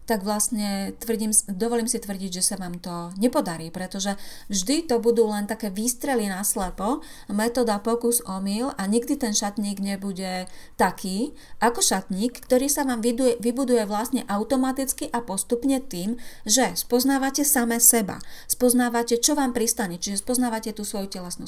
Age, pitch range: 30-49, 195-245 Hz